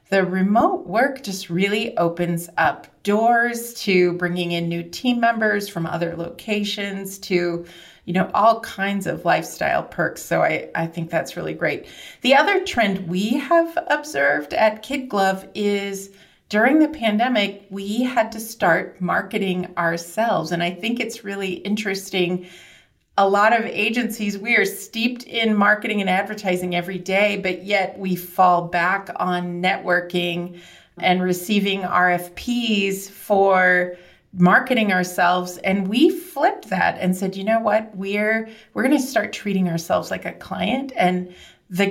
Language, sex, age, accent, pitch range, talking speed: English, female, 30-49, American, 180-225 Hz, 150 wpm